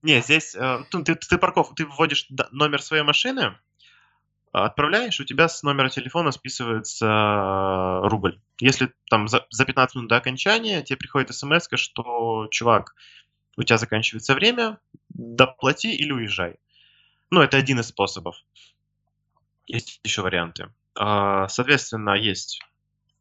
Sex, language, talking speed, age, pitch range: male, Russian, 125 wpm, 20-39, 110-140 Hz